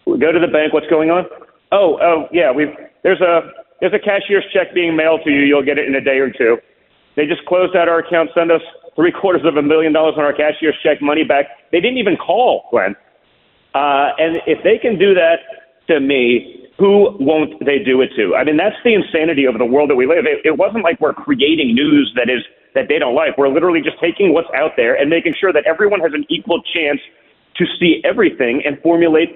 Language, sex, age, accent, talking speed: English, male, 40-59, American, 235 wpm